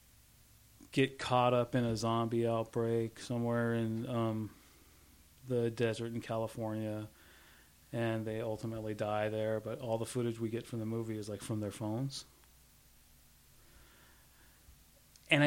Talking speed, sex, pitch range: 130 wpm, male, 110-135 Hz